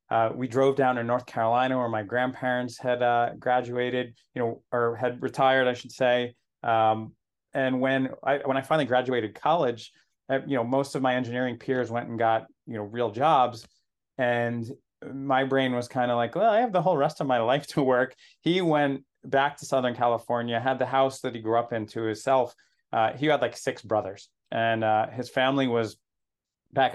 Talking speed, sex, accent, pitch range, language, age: 200 wpm, male, American, 120-140 Hz, English, 30-49